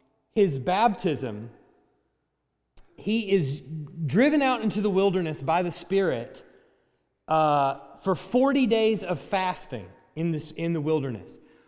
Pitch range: 145-200 Hz